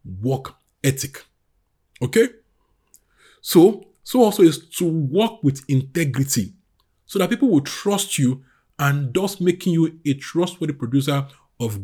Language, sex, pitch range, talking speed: English, male, 125-175 Hz, 125 wpm